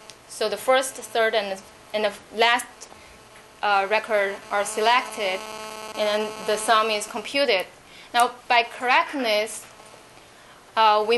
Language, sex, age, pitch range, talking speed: English, female, 20-39, 205-235 Hz, 115 wpm